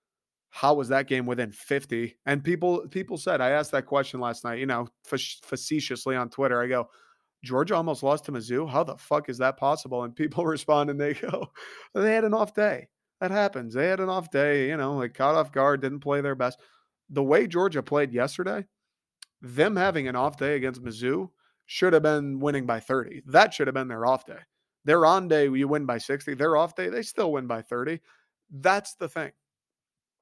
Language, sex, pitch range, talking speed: English, male, 130-155 Hz, 210 wpm